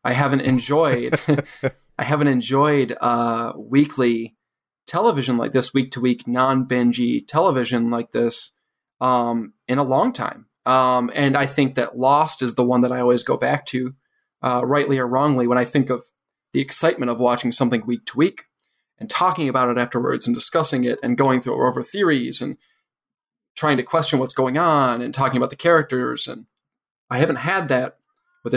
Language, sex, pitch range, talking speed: English, male, 125-145 Hz, 170 wpm